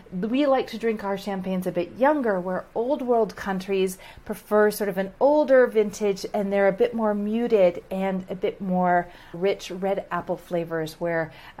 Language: English